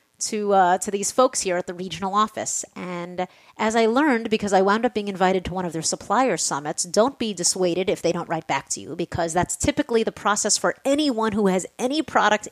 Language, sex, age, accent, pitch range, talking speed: English, female, 30-49, American, 180-230 Hz, 225 wpm